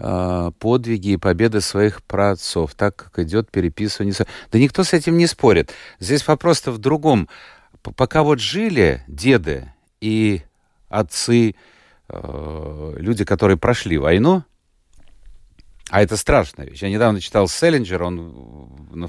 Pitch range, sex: 90-140 Hz, male